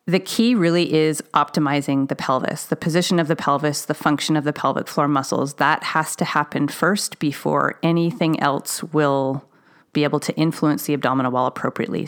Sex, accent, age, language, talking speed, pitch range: female, American, 30-49, English, 180 wpm, 145-175 Hz